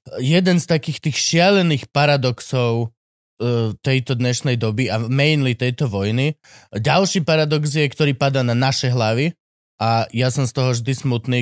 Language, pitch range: Slovak, 125-170 Hz